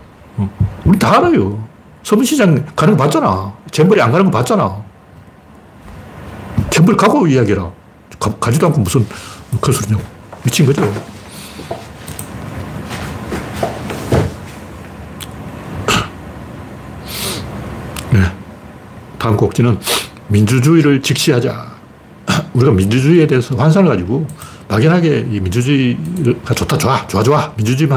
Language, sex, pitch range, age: Korean, male, 105-160 Hz, 60-79